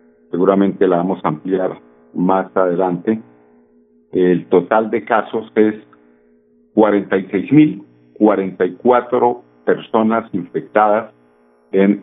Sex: male